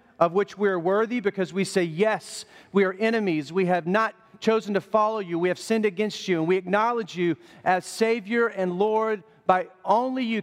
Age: 40-59